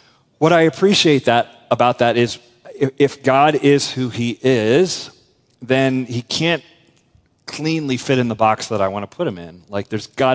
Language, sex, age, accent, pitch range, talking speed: English, male, 40-59, American, 105-135 Hz, 185 wpm